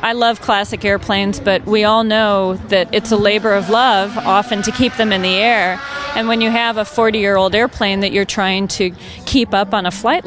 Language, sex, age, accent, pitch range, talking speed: English, female, 40-59, American, 195-225 Hz, 215 wpm